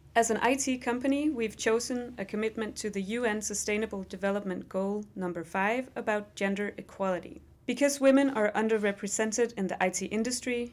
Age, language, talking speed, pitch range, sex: 30-49, Danish, 150 wpm, 180-225 Hz, female